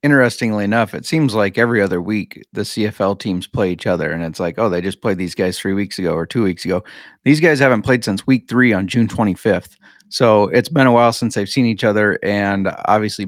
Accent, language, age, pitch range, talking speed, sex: American, English, 30-49, 100-120 Hz, 235 wpm, male